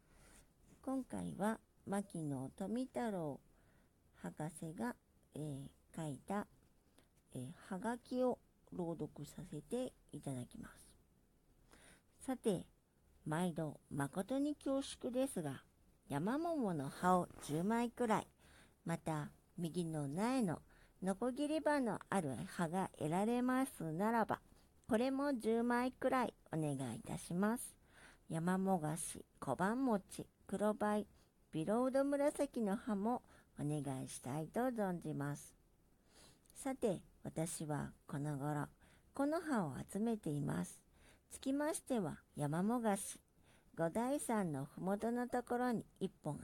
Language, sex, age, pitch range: Japanese, male, 50-69, 150-245 Hz